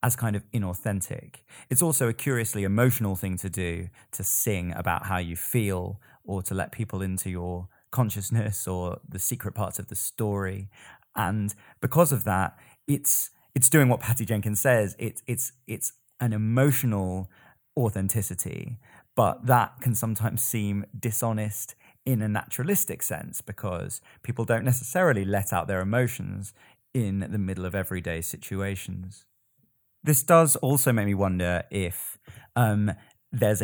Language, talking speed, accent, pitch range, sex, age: English, 145 wpm, British, 95-120 Hz, male, 20-39